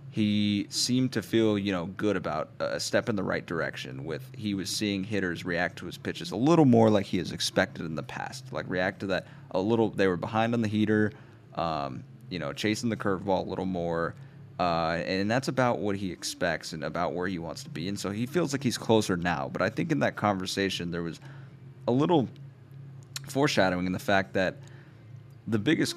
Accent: American